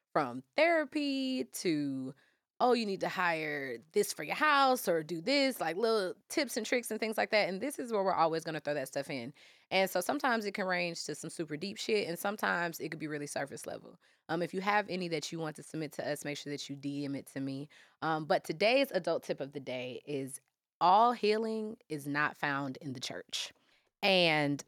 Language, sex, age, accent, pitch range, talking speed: English, female, 20-39, American, 145-205 Hz, 225 wpm